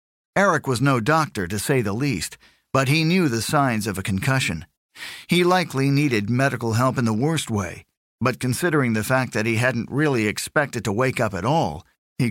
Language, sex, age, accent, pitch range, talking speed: English, male, 50-69, American, 105-140 Hz, 195 wpm